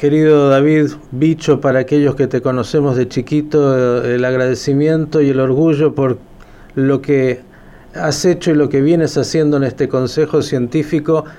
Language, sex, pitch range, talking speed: Spanish, male, 135-155 Hz, 155 wpm